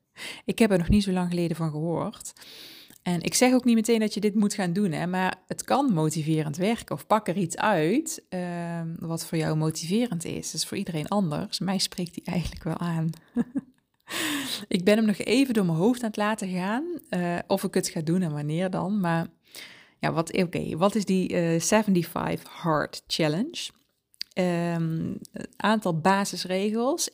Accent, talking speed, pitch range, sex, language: Dutch, 190 wpm, 165-215 Hz, female, Dutch